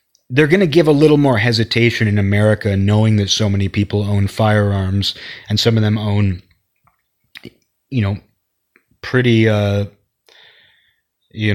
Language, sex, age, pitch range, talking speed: English, male, 30-49, 100-115 Hz, 140 wpm